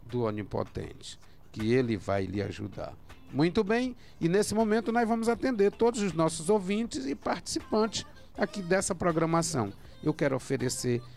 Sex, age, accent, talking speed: male, 50-69, Brazilian, 145 wpm